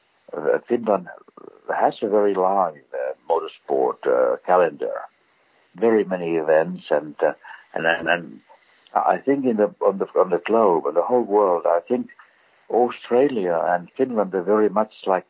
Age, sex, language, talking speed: 60-79, male, English, 155 wpm